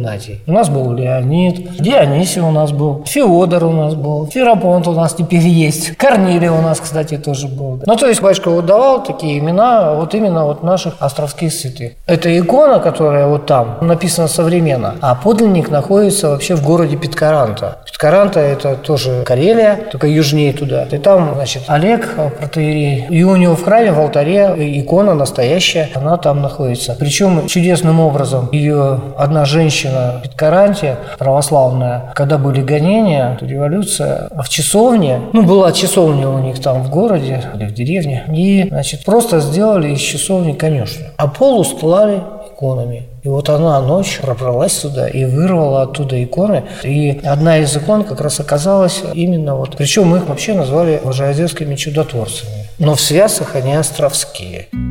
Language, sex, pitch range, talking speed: Russian, male, 140-175 Hz, 160 wpm